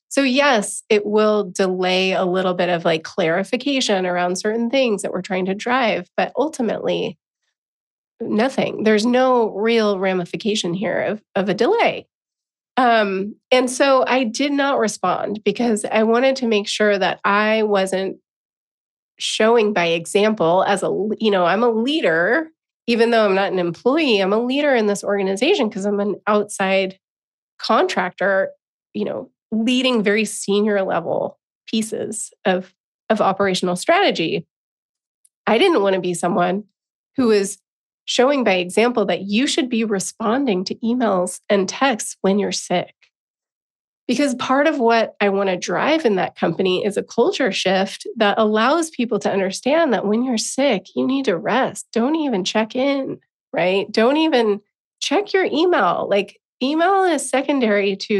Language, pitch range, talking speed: English, 195-245 Hz, 155 wpm